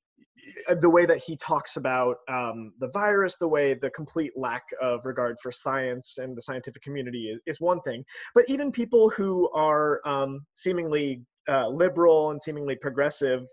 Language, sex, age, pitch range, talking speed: English, male, 20-39, 130-175 Hz, 170 wpm